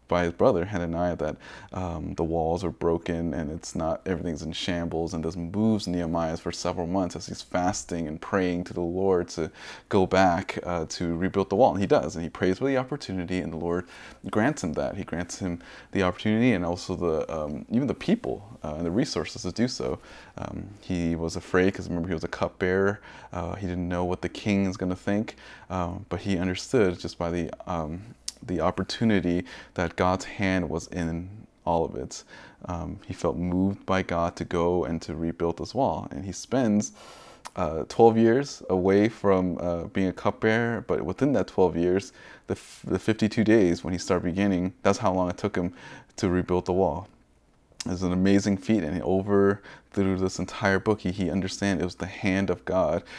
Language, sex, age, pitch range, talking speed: English, male, 30-49, 85-100 Hz, 200 wpm